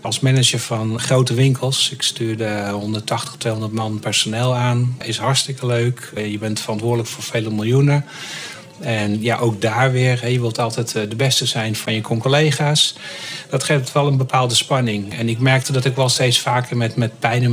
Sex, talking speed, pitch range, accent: male, 180 wpm, 115-135 Hz, Dutch